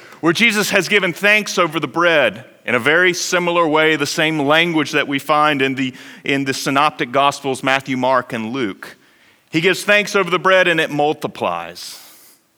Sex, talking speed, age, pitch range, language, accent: male, 180 wpm, 40-59, 130-180 Hz, English, American